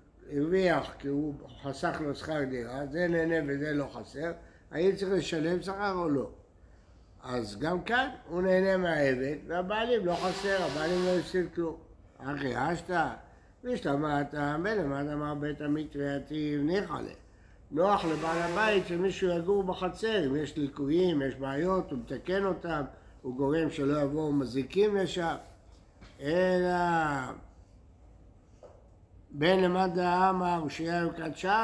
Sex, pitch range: male, 140-185 Hz